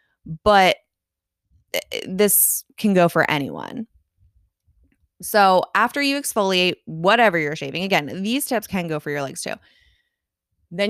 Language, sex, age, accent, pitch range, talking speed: English, female, 20-39, American, 165-210 Hz, 125 wpm